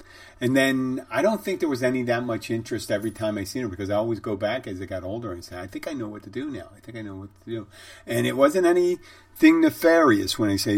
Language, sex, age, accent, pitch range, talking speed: English, male, 50-69, American, 100-125 Hz, 280 wpm